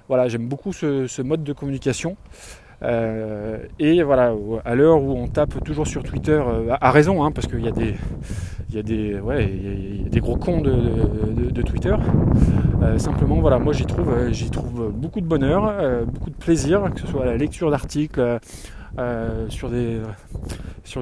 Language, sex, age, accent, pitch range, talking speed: French, male, 20-39, French, 115-150 Hz, 185 wpm